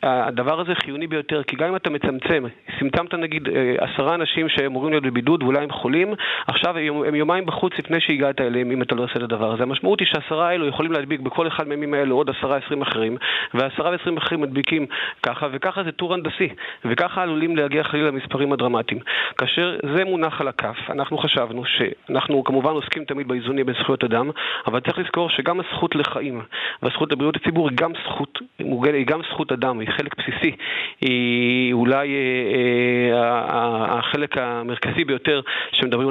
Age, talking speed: 40-59, 145 wpm